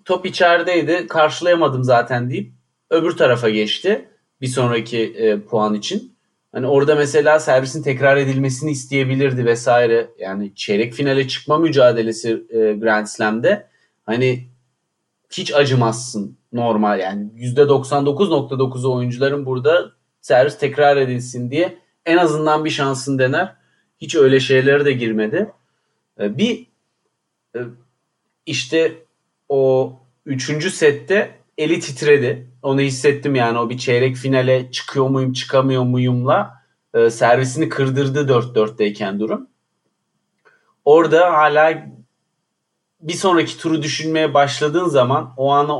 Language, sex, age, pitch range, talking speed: Turkish, male, 40-59, 125-155 Hz, 110 wpm